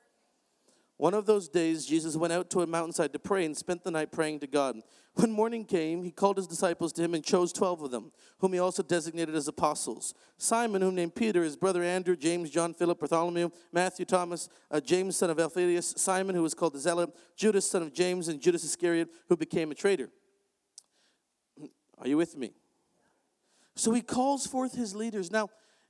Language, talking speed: English, 195 wpm